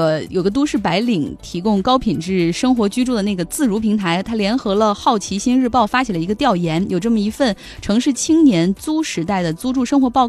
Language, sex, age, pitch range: Chinese, female, 20-39, 180-245 Hz